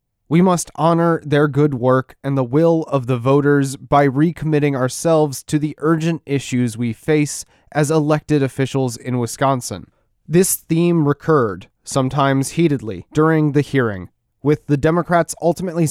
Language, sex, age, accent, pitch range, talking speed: English, male, 20-39, American, 130-160 Hz, 145 wpm